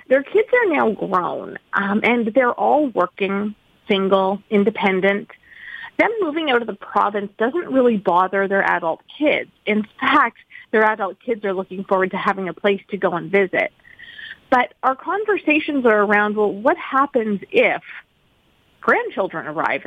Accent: American